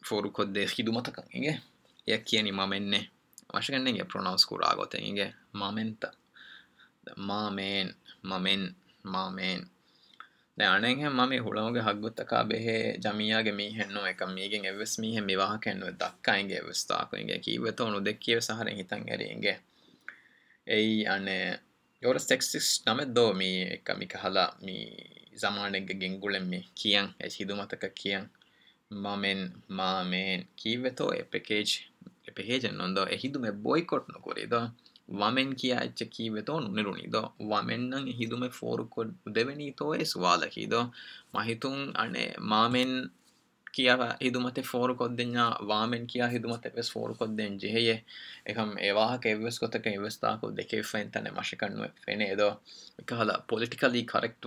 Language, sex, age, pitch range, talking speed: Urdu, male, 20-39, 100-120 Hz, 115 wpm